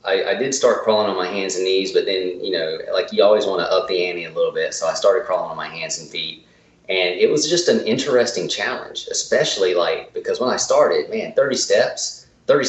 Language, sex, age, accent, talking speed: English, male, 30-49, American, 240 wpm